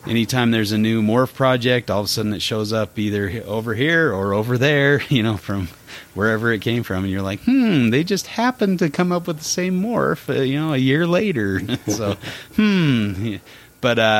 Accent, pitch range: American, 95-125 Hz